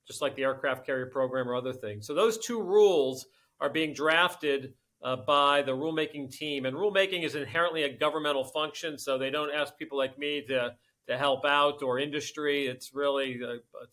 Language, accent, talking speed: English, American, 190 wpm